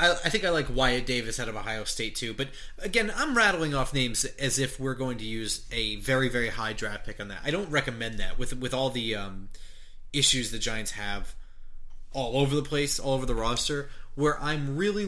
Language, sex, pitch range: English, male, 115-145 Hz